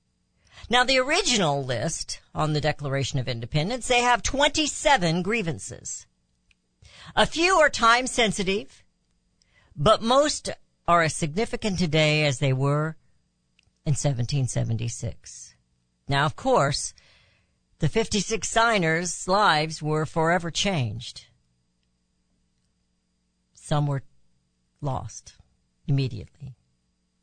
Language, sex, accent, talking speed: English, female, American, 95 wpm